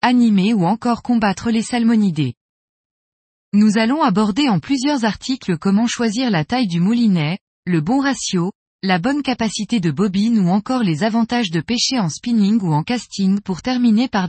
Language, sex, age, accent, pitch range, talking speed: French, female, 20-39, French, 180-240 Hz, 170 wpm